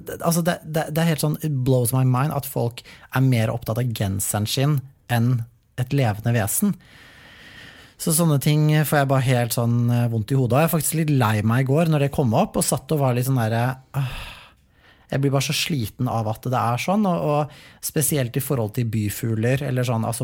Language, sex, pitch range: English, male, 115-140 Hz